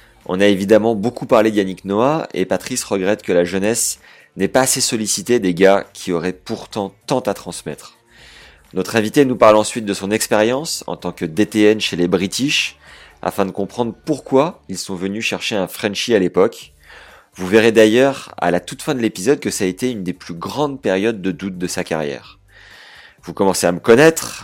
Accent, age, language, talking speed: French, 30-49, French, 195 wpm